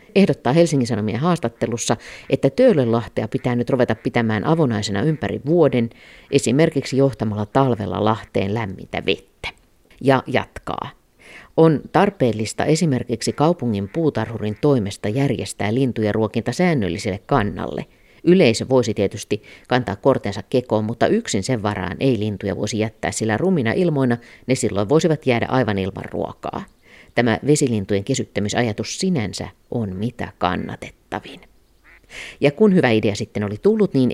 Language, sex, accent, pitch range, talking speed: Finnish, female, native, 105-135 Hz, 125 wpm